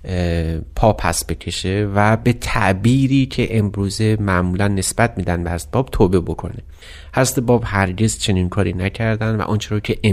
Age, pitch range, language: 30-49, 95-115 Hz, Persian